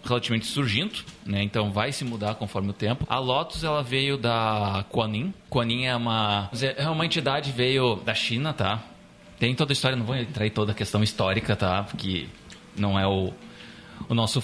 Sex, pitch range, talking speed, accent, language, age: male, 100-125 Hz, 185 wpm, Brazilian, Portuguese, 20-39